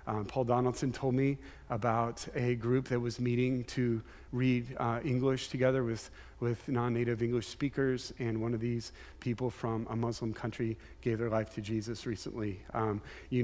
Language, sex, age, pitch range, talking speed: English, male, 40-59, 115-130 Hz, 170 wpm